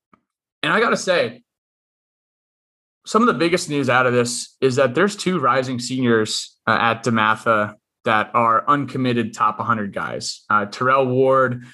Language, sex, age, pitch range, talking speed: English, male, 20-39, 115-155 Hz, 160 wpm